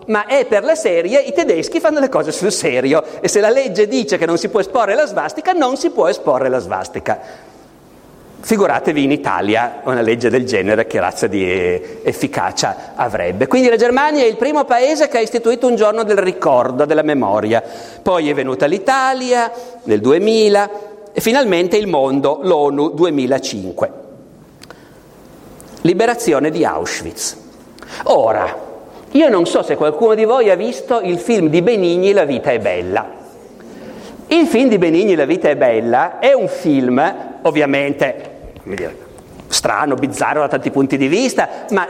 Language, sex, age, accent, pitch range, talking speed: Italian, male, 50-69, native, 175-265 Hz, 160 wpm